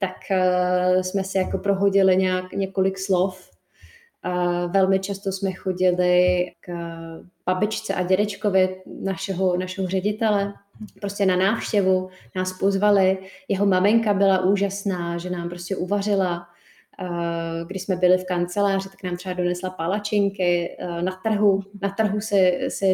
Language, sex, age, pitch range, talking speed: Czech, female, 20-39, 180-195 Hz, 125 wpm